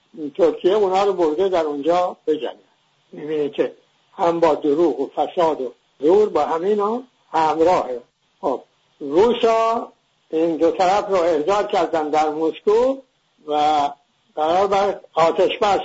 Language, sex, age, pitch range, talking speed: English, male, 60-79, 155-200 Hz, 135 wpm